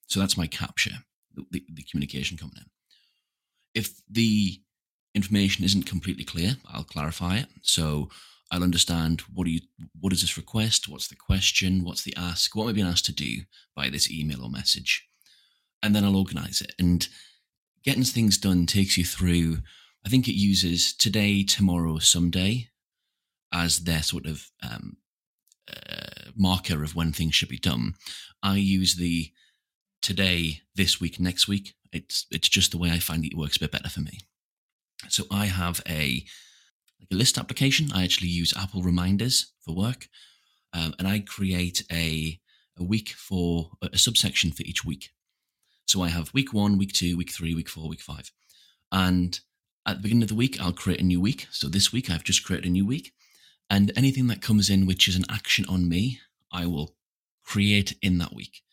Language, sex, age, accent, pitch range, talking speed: English, male, 30-49, British, 85-100 Hz, 185 wpm